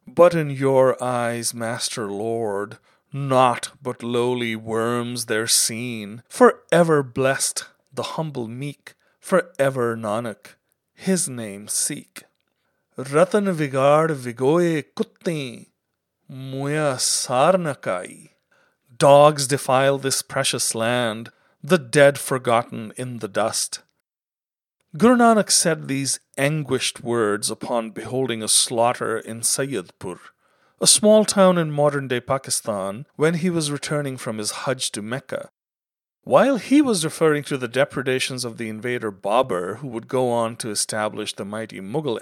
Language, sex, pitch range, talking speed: English, male, 115-150 Hz, 125 wpm